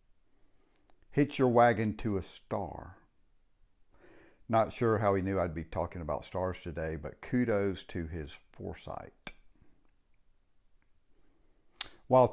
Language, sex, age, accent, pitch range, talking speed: English, male, 50-69, American, 90-125 Hz, 110 wpm